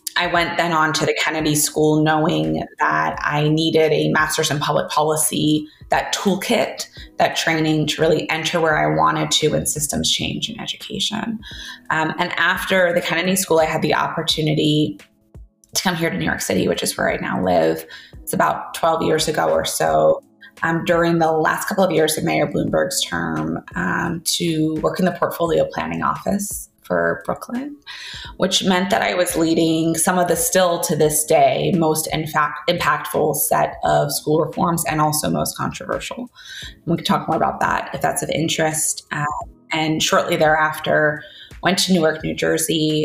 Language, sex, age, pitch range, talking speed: English, female, 20-39, 145-170 Hz, 175 wpm